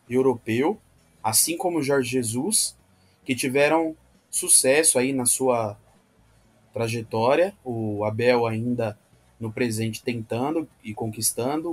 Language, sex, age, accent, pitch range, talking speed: Portuguese, male, 20-39, Brazilian, 110-135 Hz, 105 wpm